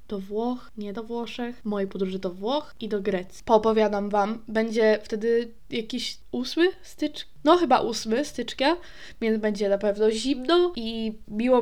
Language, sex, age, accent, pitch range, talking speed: Polish, female, 10-29, native, 205-235 Hz, 155 wpm